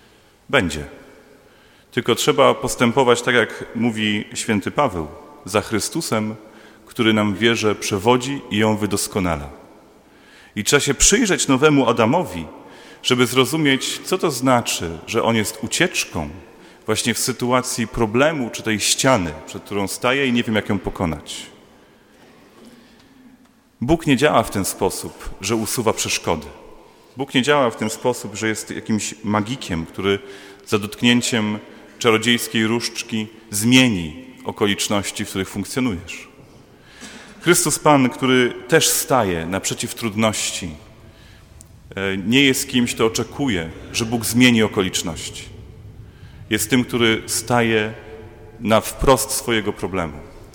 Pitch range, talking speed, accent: 105-130 Hz, 120 wpm, native